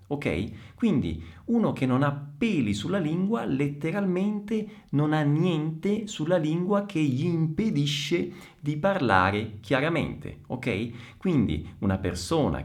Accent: native